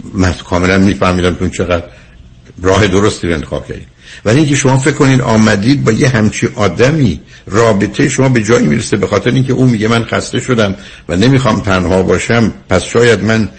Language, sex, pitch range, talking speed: Persian, male, 95-130 Hz, 185 wpm